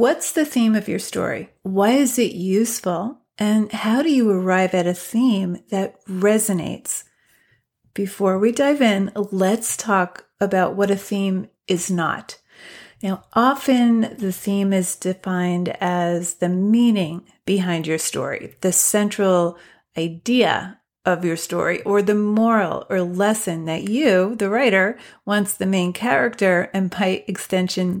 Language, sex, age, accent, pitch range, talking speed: English, female, 40-59, American, 185-230 Hz, 140 wpm